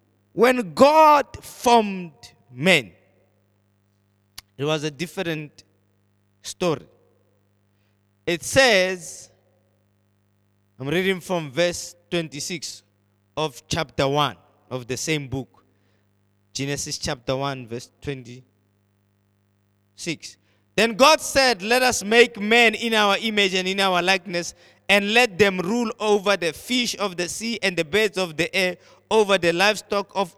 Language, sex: English, male